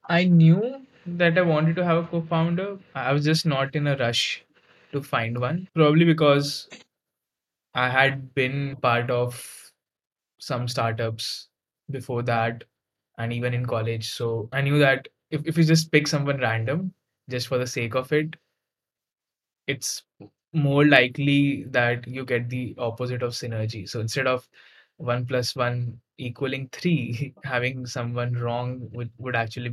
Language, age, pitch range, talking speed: English, 10-29, 120-140 Hz, 150 wpm